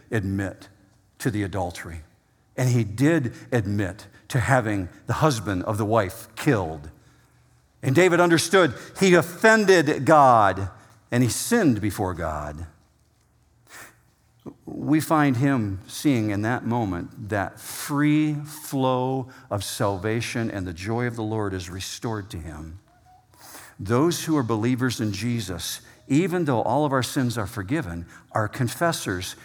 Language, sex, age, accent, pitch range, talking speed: English, male, 50-69, American, 100-145 Hz, 130 wpm